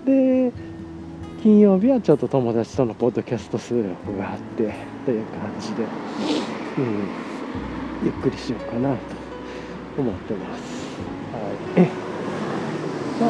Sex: male